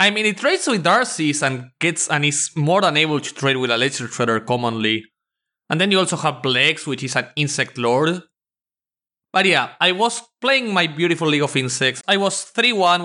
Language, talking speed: English, 200 wpm